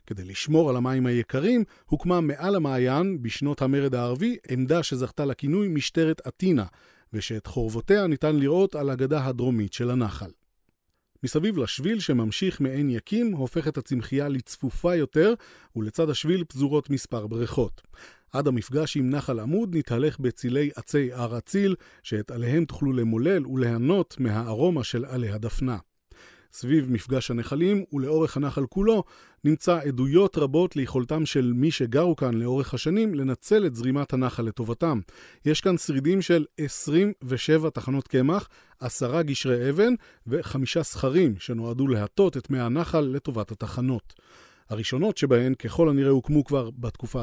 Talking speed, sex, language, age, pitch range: 135 wpm, male, Hebrew, 40-59, 120-160 Hz